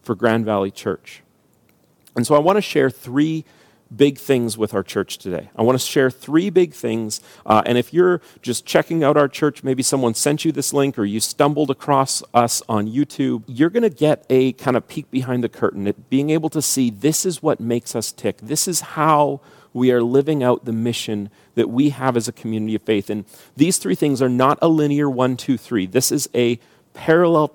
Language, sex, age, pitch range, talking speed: English, male, 40-59, 115-145 Hz, 220 wpm